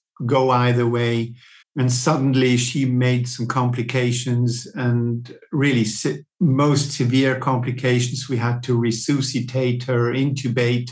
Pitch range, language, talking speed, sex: 125-155 Hz, English, 110 wpm, male